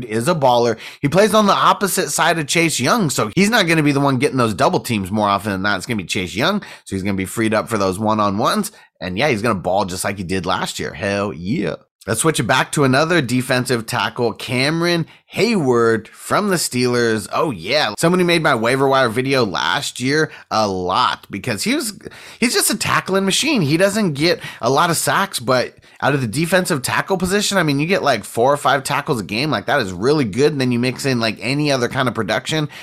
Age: 30-49